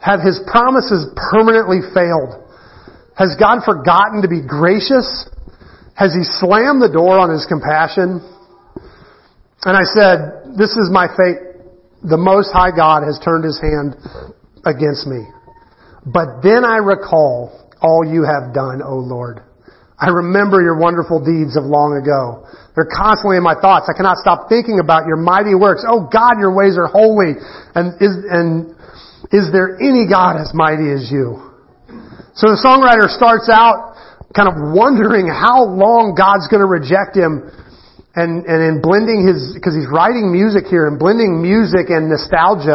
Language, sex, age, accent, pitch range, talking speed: English, male, 40-59, American, 155-200 Hz, 160 wpm